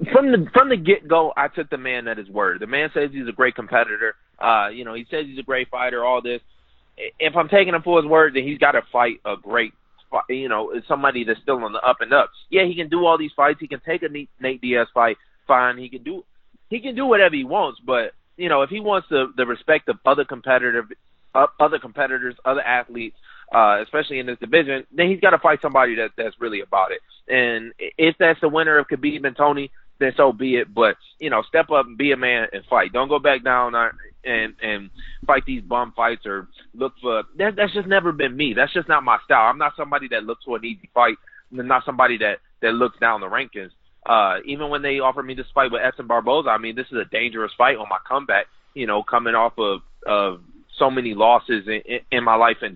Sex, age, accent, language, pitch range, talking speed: male, 30-49, American, English, 120-160 Hz, 245 wpm